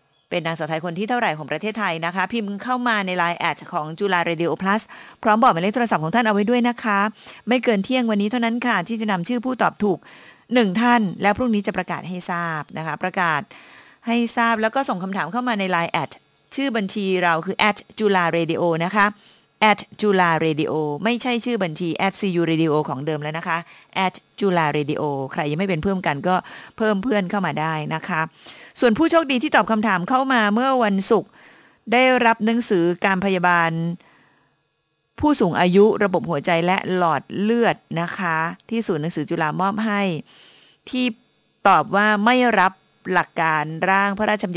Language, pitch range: English, 170-225 Hz